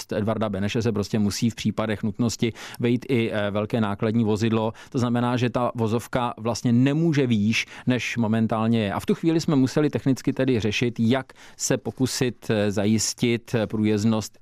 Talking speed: 160 wpm